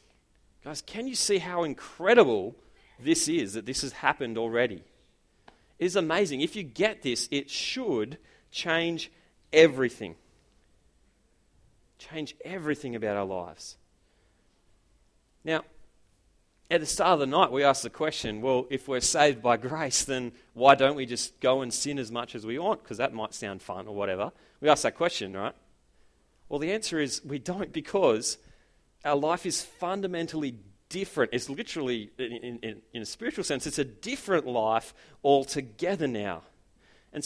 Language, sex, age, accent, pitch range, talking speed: English, male, 30-49, Australian, 115-170 Hz, 155 wpm